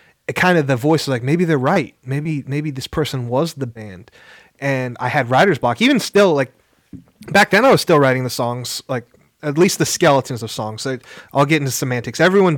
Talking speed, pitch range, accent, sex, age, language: 220 wpm, 125-150 Hz, American, male, 30-49, English